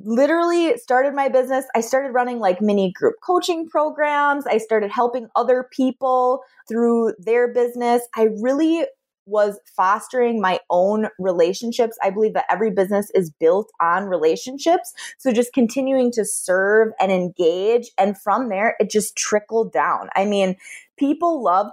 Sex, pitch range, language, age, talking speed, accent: female, 190-255 Hz, English, 20-39, 150 wpm, American